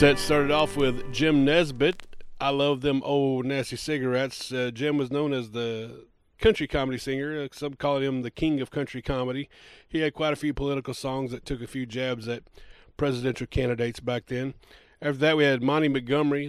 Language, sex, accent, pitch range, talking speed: English, male, American, 130-160 Hz, 190 wpm